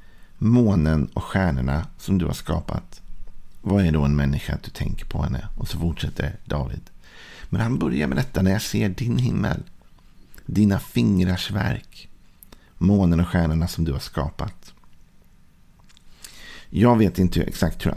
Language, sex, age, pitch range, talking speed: Swedish, male, 50-69, 80-100 Hz, 155 wpm